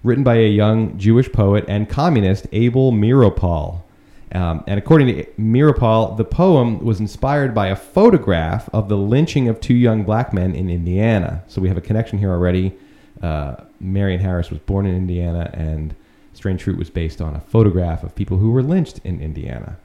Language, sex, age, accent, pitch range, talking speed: English, male, 30-49, American, 95-130 Hz, 185 wpm